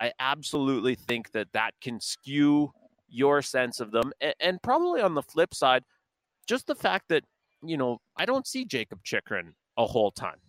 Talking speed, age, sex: 175 wpm, 30-49, male